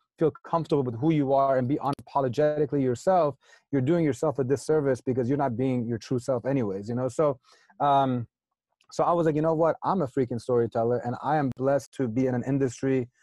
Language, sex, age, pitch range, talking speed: English, male, 30-49, 130-150 Hz, 215 wpm